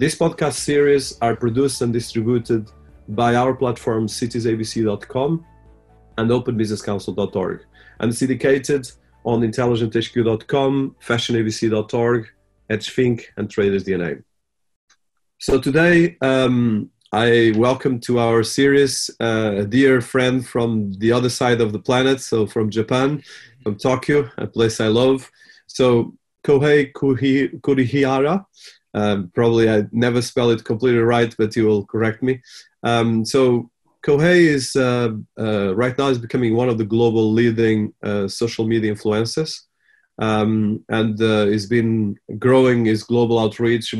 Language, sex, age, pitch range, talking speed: English, male, 30-49, 110-130 Hz, 130 wpm